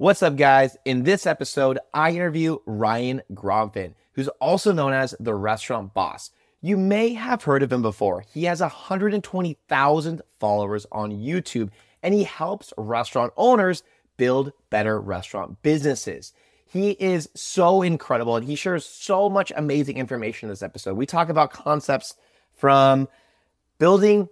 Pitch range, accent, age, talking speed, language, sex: 115-175 Hz, American, 30-49, 145 wpm, English, male